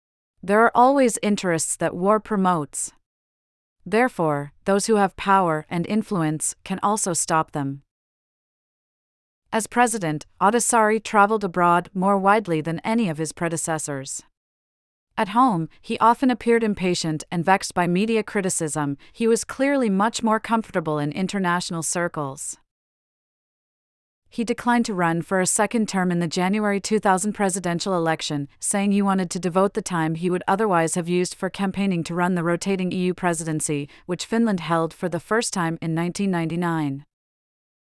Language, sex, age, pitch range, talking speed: English, female, 40-59, 165-210 Hz, 145 wpm